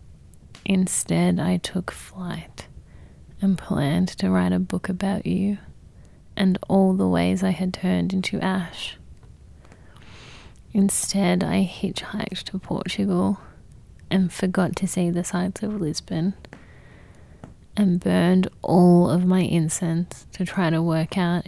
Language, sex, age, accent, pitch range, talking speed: English, female, 20-39, Australian, 160-195 Hz, 125 wpm